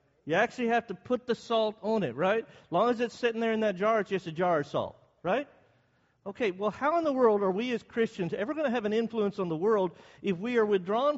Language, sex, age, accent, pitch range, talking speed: English, male, 50-69, American, 145-225 Hz, 265 wpm